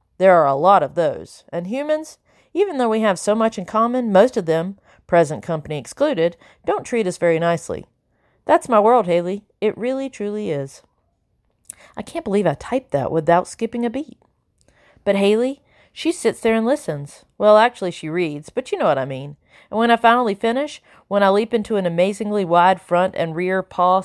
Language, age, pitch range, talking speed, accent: English, 40-59, 160-220 Hz, 195 wpm, American